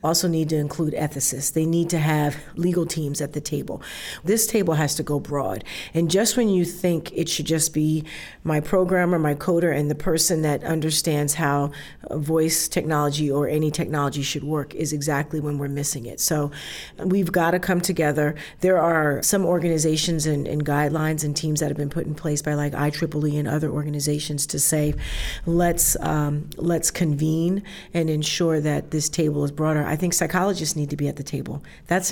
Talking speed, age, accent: 190 wpm, 40-59, American